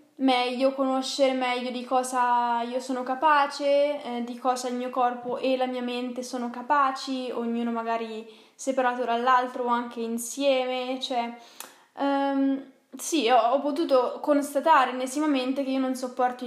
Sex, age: female, 10-29